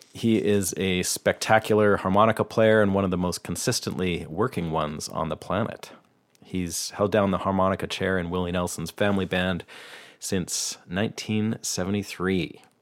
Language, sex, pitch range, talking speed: English, male, 90-105 Hz, 140 wpm